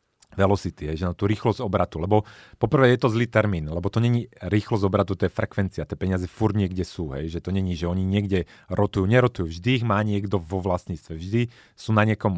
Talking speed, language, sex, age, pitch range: 220 wpm, Slovak, male, 30-49, 90-115 Hz